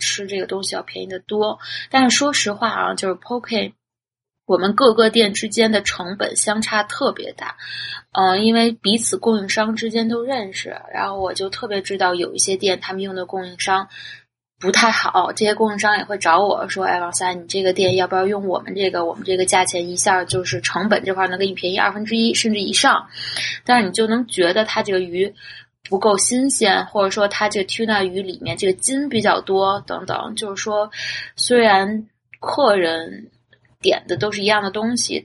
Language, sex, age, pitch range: Chinese, female, 20-39, 185-220 Hz